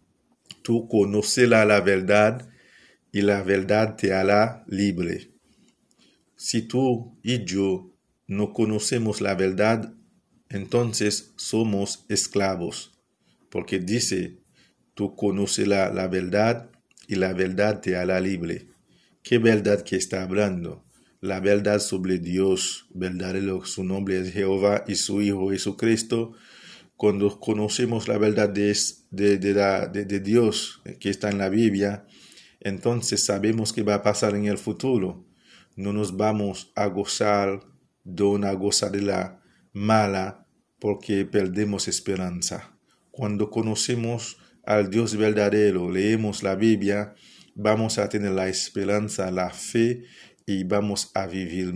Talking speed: 125 wpm